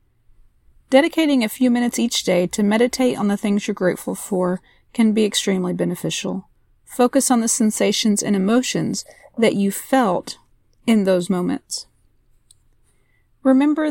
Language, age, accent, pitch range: English, 40-59, American, 185-240 Hz